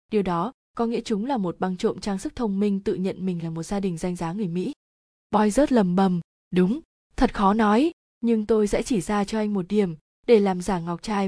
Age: 20-39